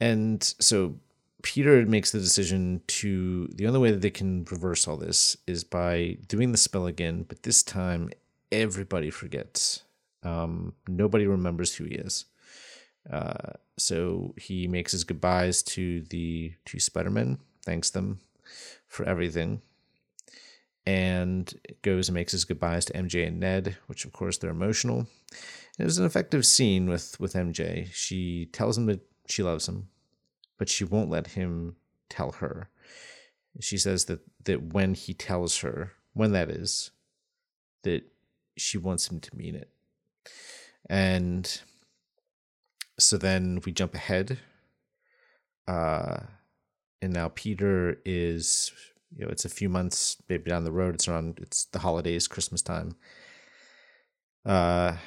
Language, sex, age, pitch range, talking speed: English, male, 30-49, 85-105 Hz, 145 wpm